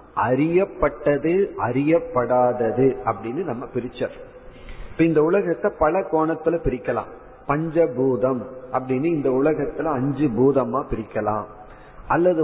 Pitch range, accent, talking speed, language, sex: 125-160 Hz, native, 90 wpm, Tamil, male